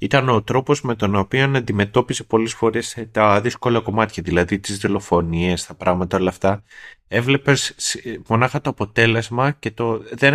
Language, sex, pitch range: Greek, male, 85-115 Hz